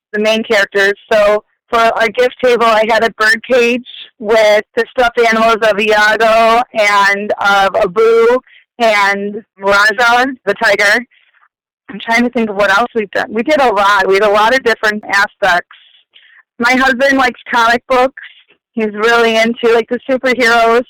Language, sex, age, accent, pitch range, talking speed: English, female, 30-49, American, 205-240 Hz, 165 wpm